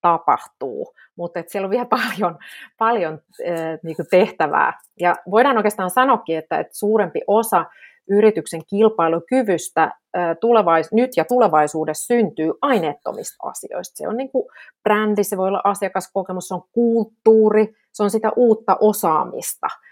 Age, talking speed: 30-49, 120 wpm